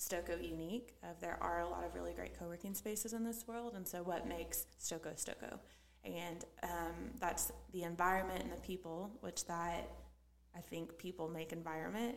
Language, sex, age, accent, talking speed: English, female, 20-39, American, 180 wpm